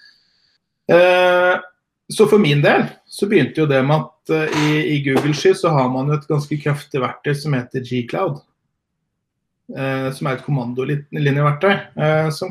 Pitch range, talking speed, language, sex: 135-165 Hz, 165 wpm, English, male